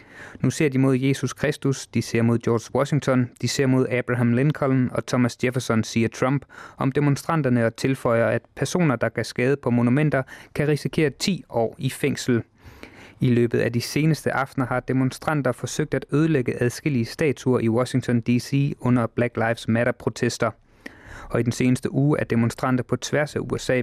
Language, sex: English, male